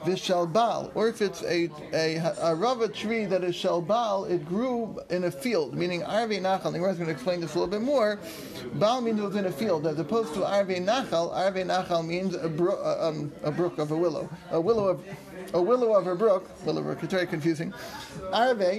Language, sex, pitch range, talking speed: English, male, 175-220 Hz, 210 wpm